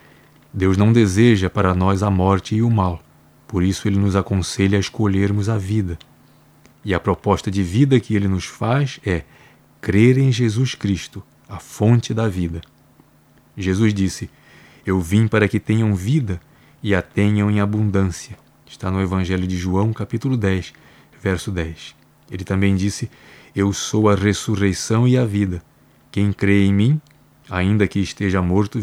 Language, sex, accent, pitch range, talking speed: Portuguese, male, Brazilian, 95-120 Hz, 160 wpm